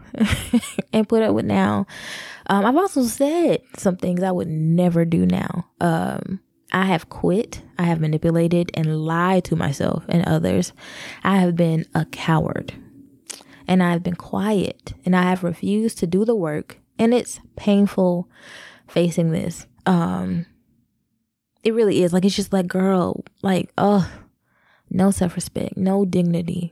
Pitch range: 170-200 Hz